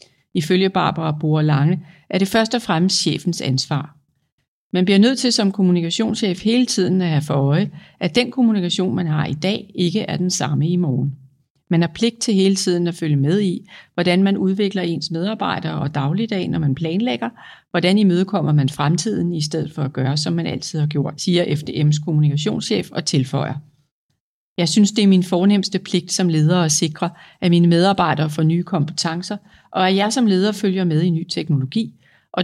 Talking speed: 190 wpm